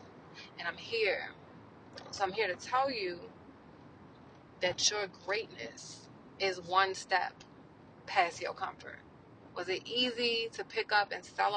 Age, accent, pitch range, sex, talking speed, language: 20-39, American, 185-255 Hz, female, 135 wpm, English